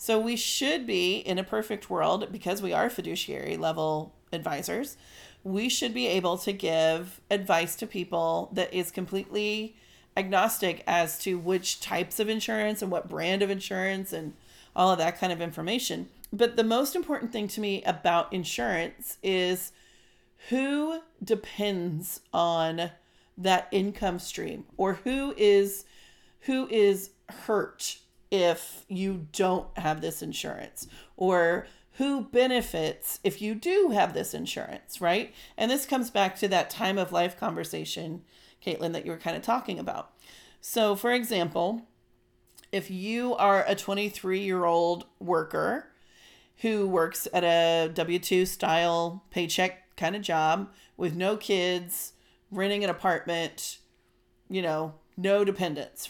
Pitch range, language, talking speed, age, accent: 175-210 Hz, English, 140 wpm, 40-59, American